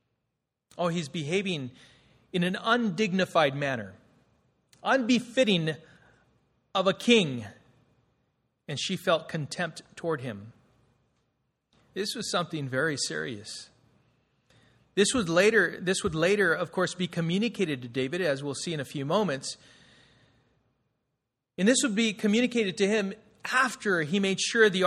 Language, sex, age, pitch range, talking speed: English, male, 40-59, 140-215 Hz, 125 wpm